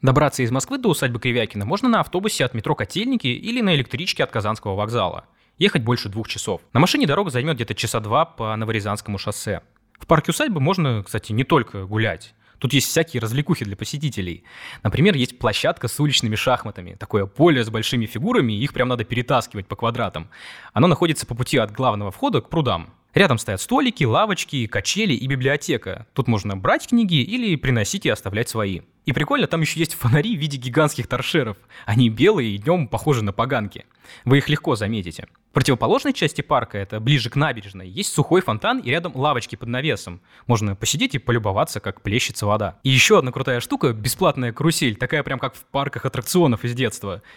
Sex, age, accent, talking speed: male, 20-39, native, 185 wpm